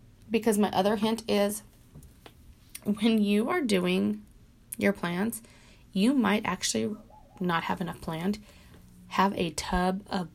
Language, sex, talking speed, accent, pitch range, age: English, female, 130 wpm, American, 180-225 Hz, 30-49